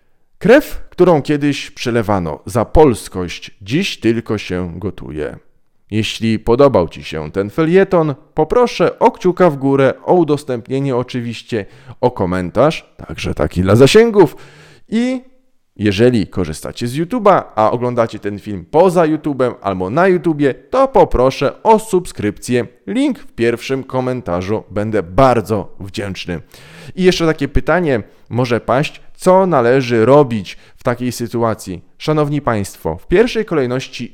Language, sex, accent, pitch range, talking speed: Polish, male, native, 100-150 Hz, 125 wpm